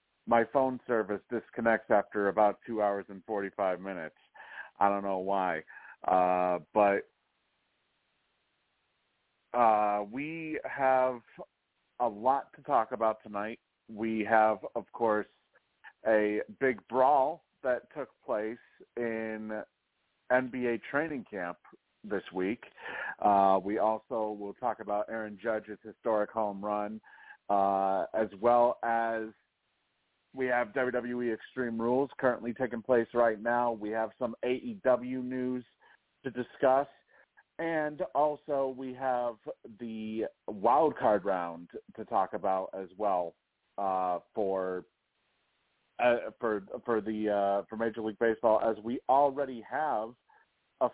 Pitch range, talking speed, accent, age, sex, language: 105-125 Hz, 120 wpm, American, 50-69, male, English